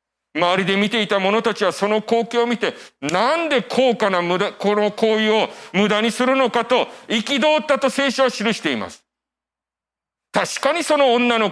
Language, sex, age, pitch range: Japanese, male, 40-59, 180-255 Hz